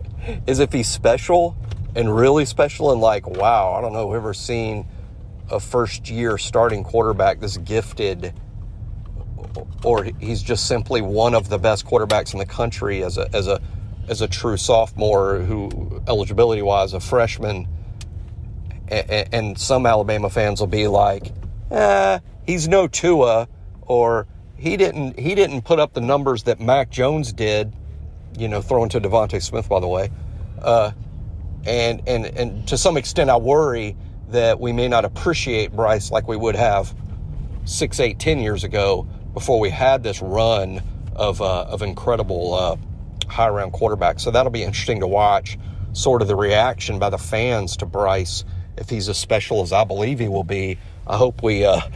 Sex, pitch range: male, 95-115 Hz